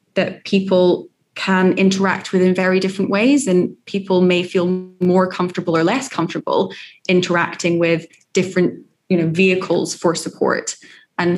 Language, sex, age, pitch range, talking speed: English, female, 20-39, 170-190 Hz, 140 wpm